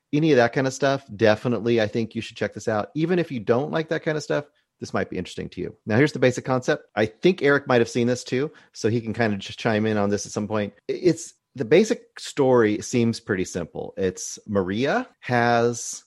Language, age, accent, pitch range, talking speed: English, 30-49, American, 105-130 Hz, 245 wpm